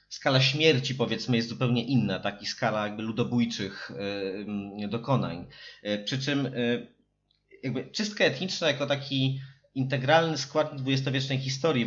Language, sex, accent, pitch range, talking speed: Polish, male, native, 115-140 Hz, 120 wpm